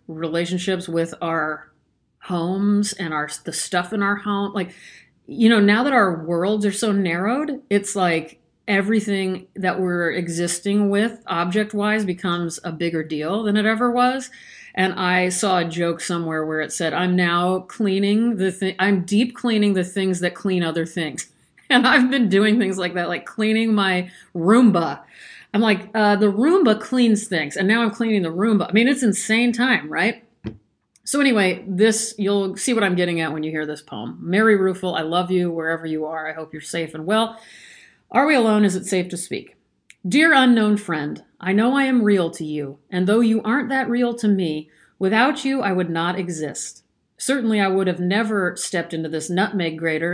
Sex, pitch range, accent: female, 175-220 Hz, American